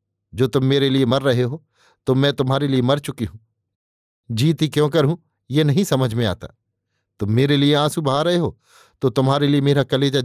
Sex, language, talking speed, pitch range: male, Hindi, 205 wpm, 110-145 Hz